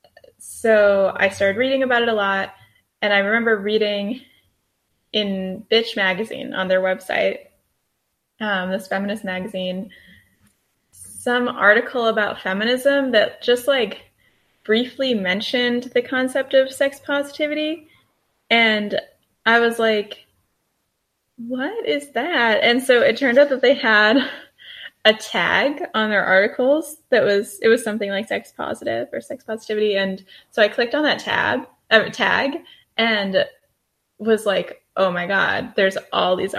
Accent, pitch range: American, 190-250 Hz